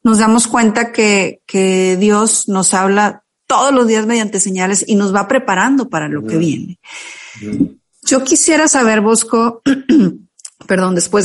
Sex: female